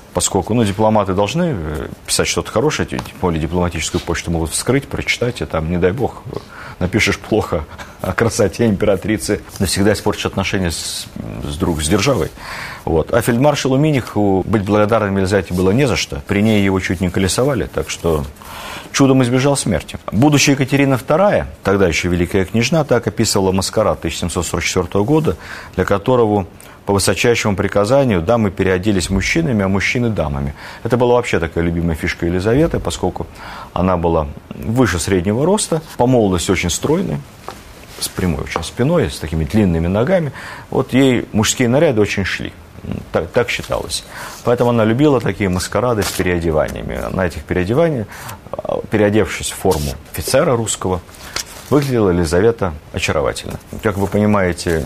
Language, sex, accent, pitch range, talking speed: Russian, male, native, 90-115 Hz, 140 wpm